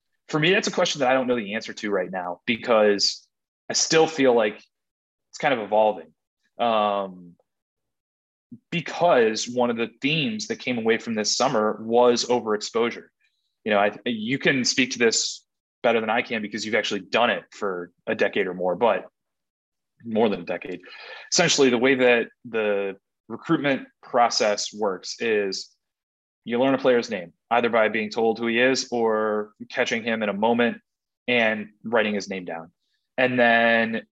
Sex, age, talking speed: male, 20-39, 170 wpm